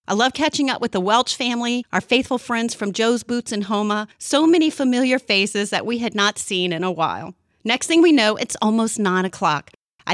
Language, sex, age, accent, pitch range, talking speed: English, female, 40-59, American, 200-255 Hz, 220 wpm